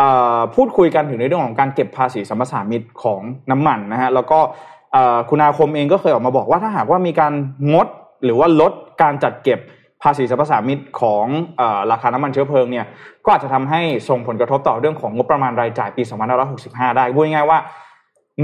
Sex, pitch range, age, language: male, 125-160 Hz, 20-39, Thai